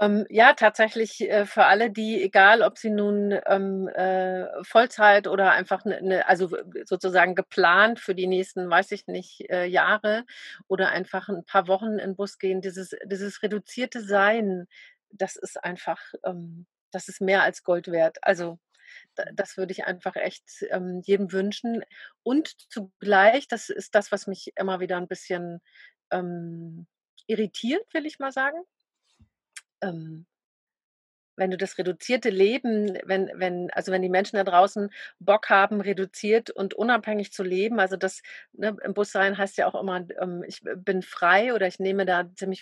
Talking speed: 155 wpm